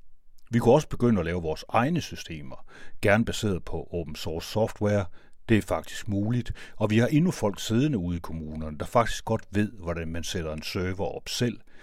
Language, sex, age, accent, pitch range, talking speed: Danish, male, 60-79, native, 85-115 Hz, 200 wpm